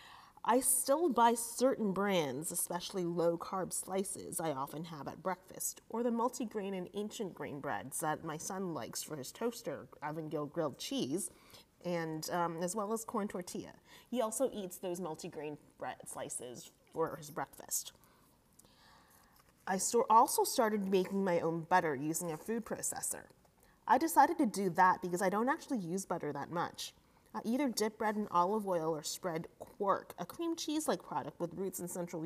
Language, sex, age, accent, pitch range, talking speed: English, female, 30-49, American, 165-225 Hz, 165 wpm